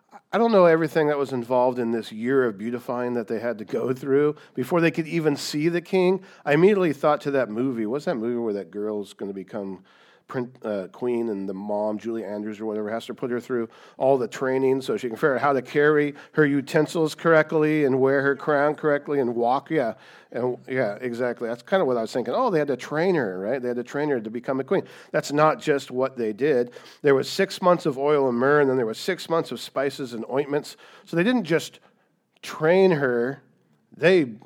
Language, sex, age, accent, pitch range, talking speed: English, male, 50-69, American, 125-165 Hz, 235 wpm